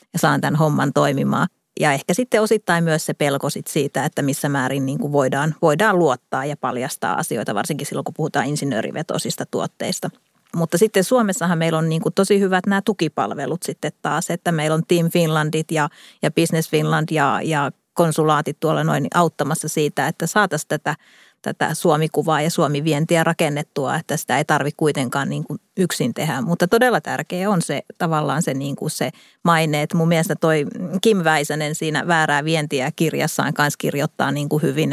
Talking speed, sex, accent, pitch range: 170 wpm, female, native, 145-170 Hz